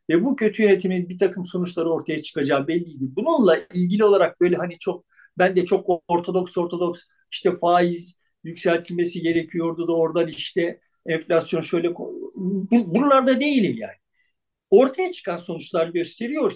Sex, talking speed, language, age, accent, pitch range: male, 140 wpm, Turkish, 60-79, native, 175-240 Hz